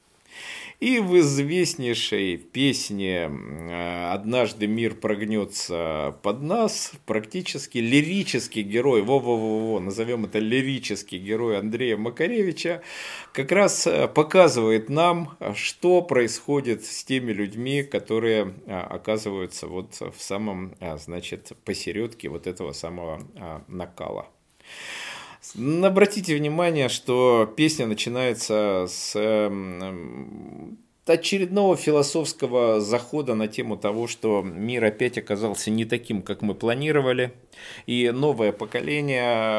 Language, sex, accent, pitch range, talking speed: Russian, male, native, 105-145 Hz, 95 wpm